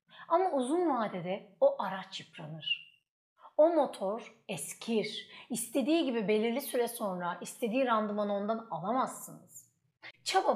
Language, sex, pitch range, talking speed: Turkish, female, 195-280 Hz, 110 wpm